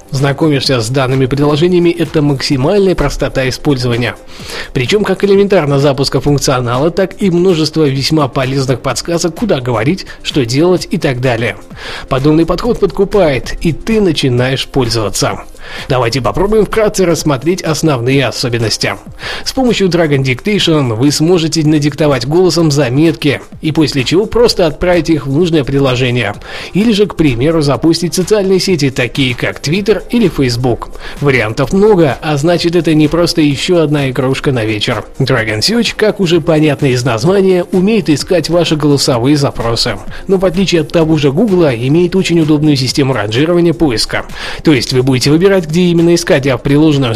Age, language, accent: 20-39, Russian, native